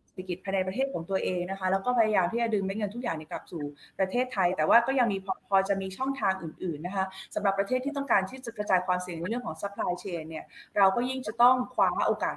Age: 20-39